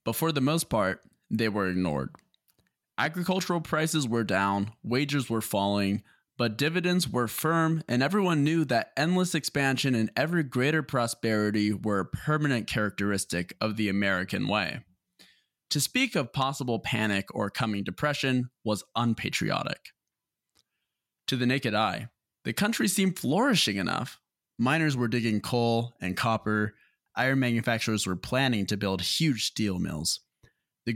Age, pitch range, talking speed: 20-39, 105-135 Hz, 140 wpm